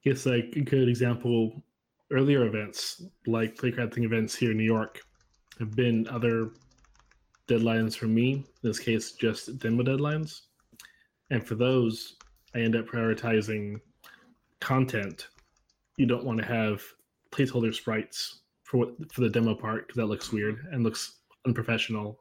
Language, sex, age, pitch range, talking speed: English, male, 20-39, 110-120 Hz, 145 wpm